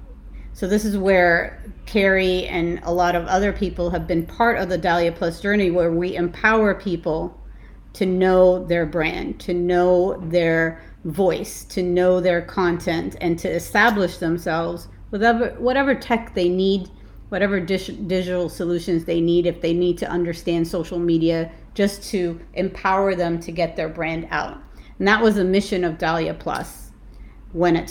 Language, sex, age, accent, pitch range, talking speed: English, female, 40-59, American, 170-195 Hz, 165 wpm